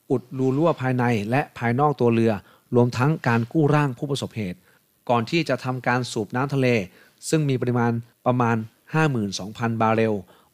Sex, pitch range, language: male, 115-135 Hz, Thai